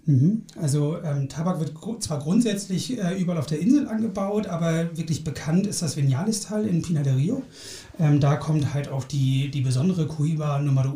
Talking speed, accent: 180 wpm, German